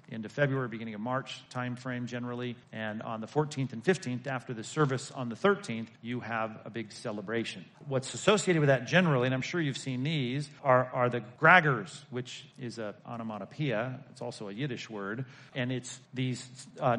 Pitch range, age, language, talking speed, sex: 120-150 Hz, 40-59, English, 185 wpm, male